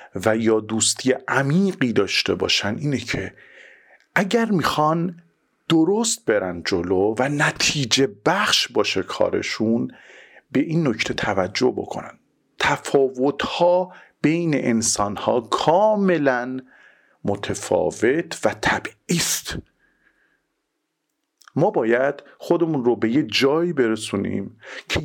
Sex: male